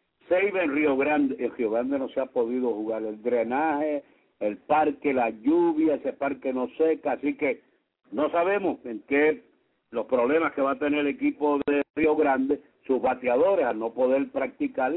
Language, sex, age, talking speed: English, male, 60-79, 180 wpm